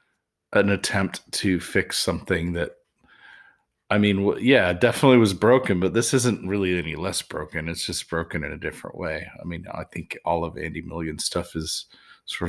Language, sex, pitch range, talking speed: English, male, 90-130 Hz, 180 wpm